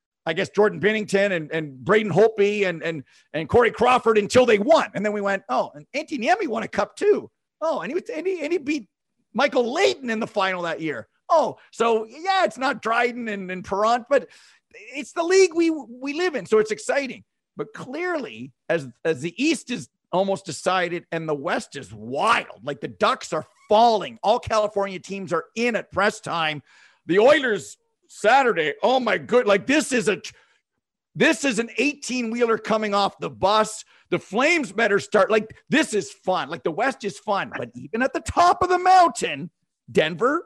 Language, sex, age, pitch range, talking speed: English, male, 50-69, 190-270 Hz, 195 wpm